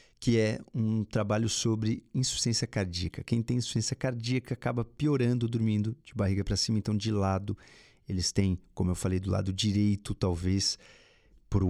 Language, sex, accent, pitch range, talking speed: Portuguese, male, Brazilian, 100-125 Hz, 160 wpm